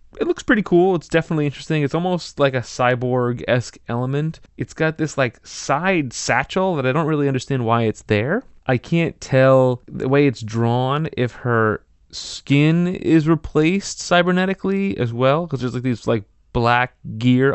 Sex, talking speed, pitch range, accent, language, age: male, 170 wpm, 115-160 Hz, American, English, 20-39